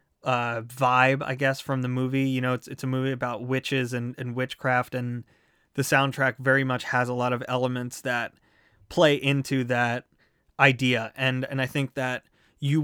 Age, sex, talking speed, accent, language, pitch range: 20-39, male, 180 wpm, American, English, 120-135 Hz